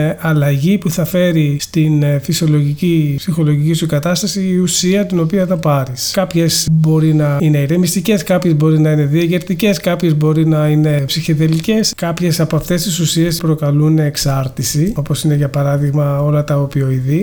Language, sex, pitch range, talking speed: Greek, male, 145-170 Hz, 155 wpm